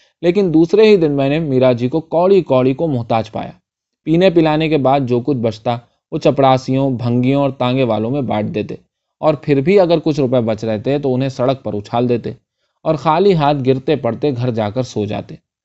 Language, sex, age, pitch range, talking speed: Urdu, male, 20-39, 120-160 Hz, 205 wpm